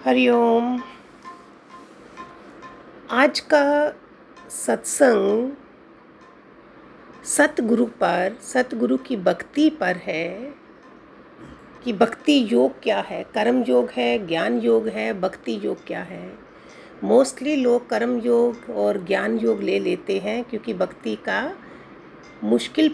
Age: 50-69